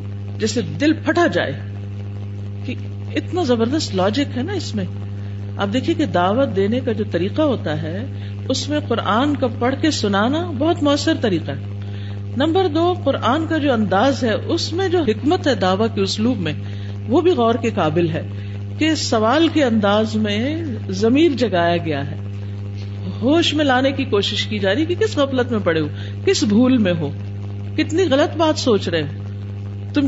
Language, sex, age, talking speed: Urdu, female, 50-69, 175 wpm